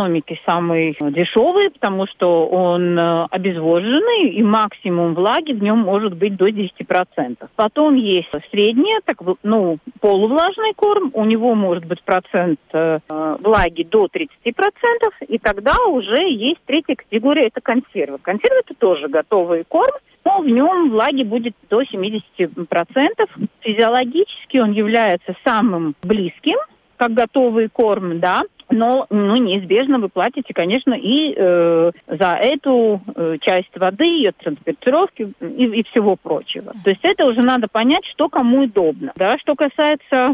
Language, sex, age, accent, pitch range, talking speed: Russian, female, 40-59, native, 185-275 Hz, 140 wpm